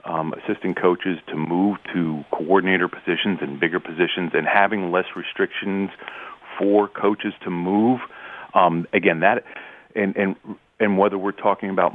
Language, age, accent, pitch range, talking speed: English, 40-59, American, 90-110 Hz, 145 wpm